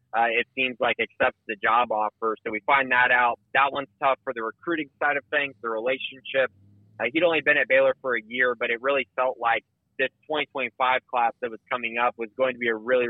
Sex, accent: male, American